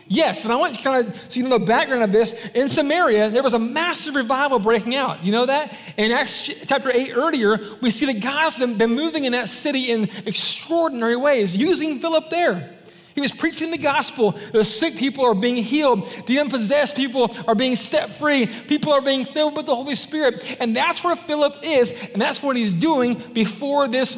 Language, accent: English, American